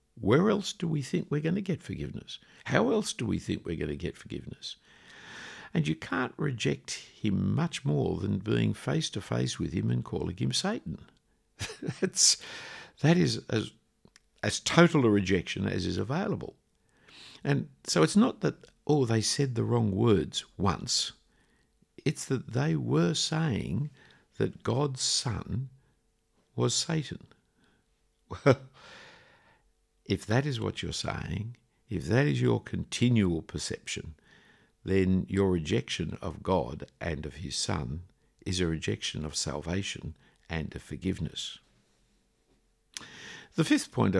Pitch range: 90-145 Hz